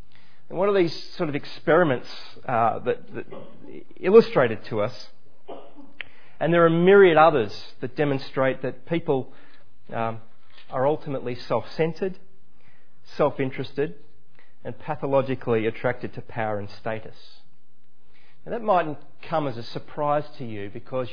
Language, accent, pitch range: English, Australian, 120-170 Hz